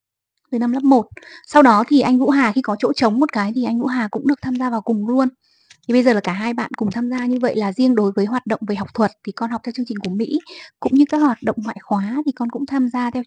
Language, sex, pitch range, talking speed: Vietnamese, female, 210-265 Hz, 310 wpm